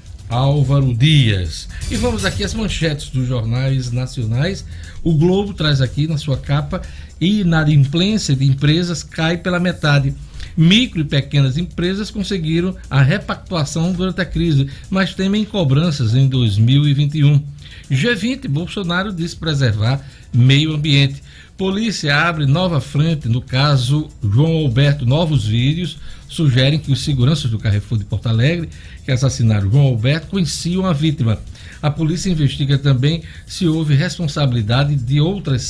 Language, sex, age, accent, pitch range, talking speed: Portuguese, male, 60-79, Brazilian, 125-165 Hz, 135 wpm